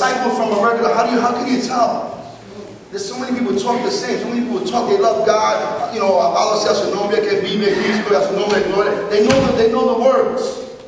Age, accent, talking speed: 40-59, American, 170 wpm